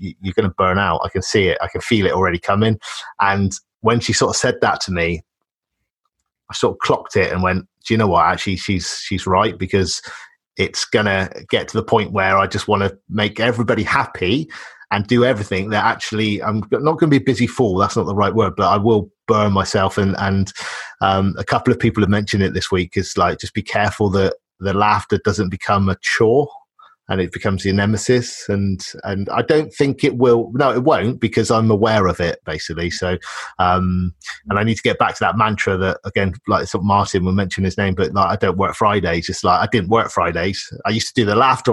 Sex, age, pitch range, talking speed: male, 30-49, 95-115 Hz, 230 wpm